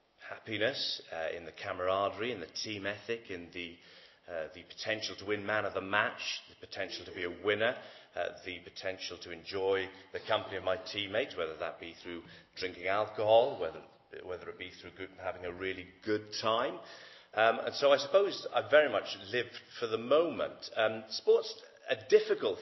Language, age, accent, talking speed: English, 40-59, British, 180 wpm